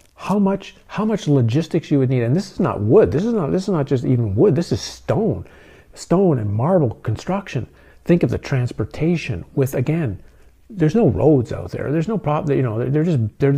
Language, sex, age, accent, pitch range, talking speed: Dutch, male, 50-69, American, 120-165 Hz, 215 wpm